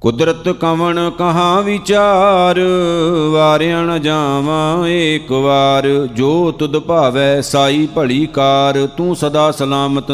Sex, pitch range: male, 140-155 Hz